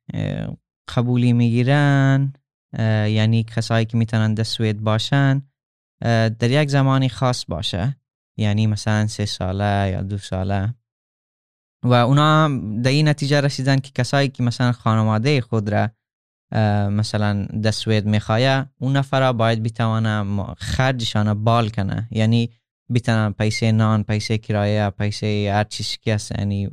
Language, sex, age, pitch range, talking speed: Persian, male, 20-39, 105-120 Hz, 125 wpm